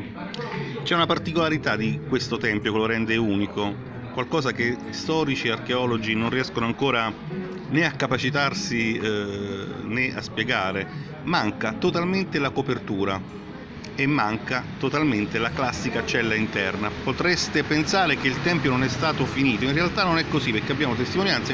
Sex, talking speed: male, 150 wpm